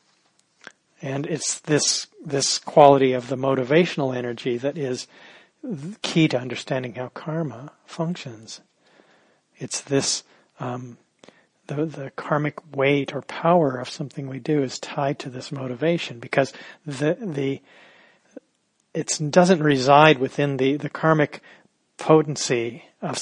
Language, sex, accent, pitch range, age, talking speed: English, male, American, 130-150 Hz, 40-59, 120 wpm